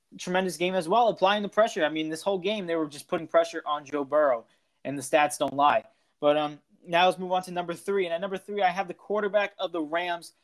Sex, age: male, 20-39